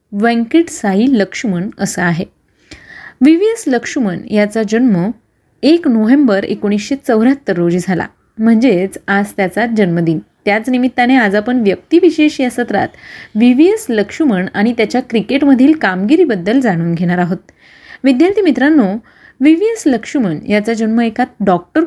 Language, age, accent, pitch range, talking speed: Marathi, 30-49, native, 205-275 Hz, 120 wpm